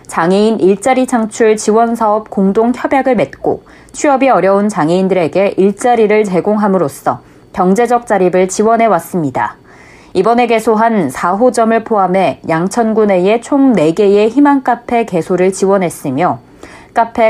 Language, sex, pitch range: Korean, female, 185-235 Hz